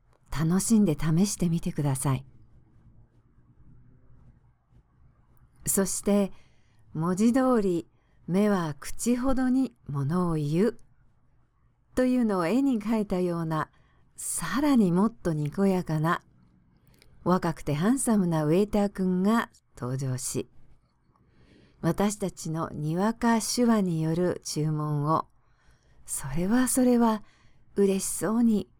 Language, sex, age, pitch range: English, female, 50-69, 130-200 Hz